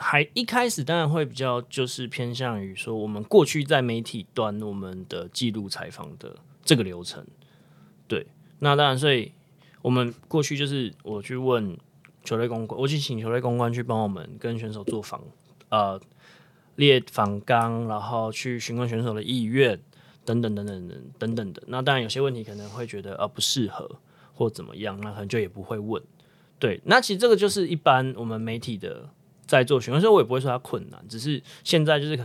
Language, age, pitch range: Chinese, 20-39, 110-145 Hz